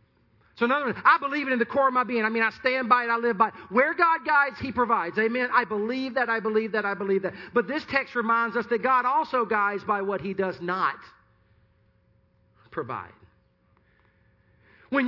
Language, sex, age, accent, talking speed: English, male, 40-59, American, 215 wpm